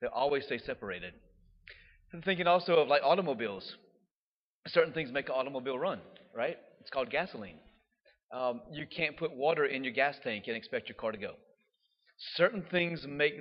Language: English